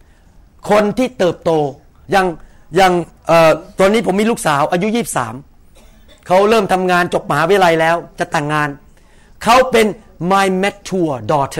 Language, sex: Thai, male